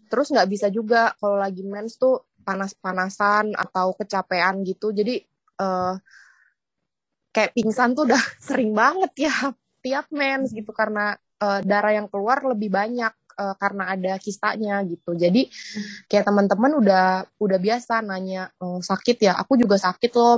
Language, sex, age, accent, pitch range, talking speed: Indonesian, female, 20-39, native, 195-230 Hz, 145 wpm